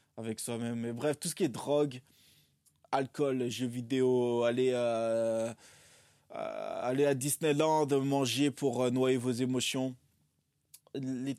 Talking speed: 125 wpm